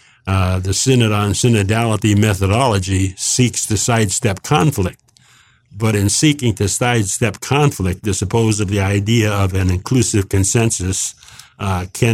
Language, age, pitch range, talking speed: English, 60-79, 100-120 Hz, 135 wpm